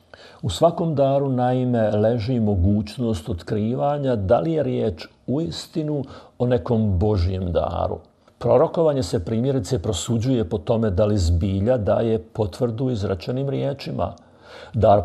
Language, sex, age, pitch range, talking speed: Croatian, male, 50-69, 95-120 Hz, 125 wpm